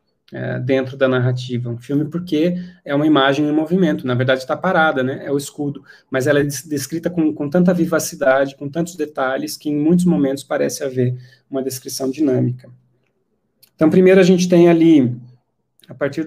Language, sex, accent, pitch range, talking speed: Portuguese, male, Brazilian, 130-160 Hz, 175 wpm